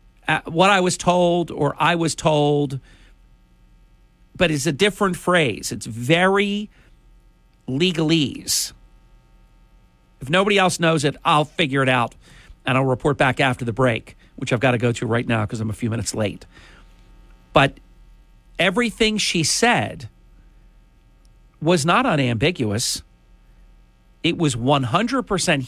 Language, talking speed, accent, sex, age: English, 130 wpm, American, male, 50-69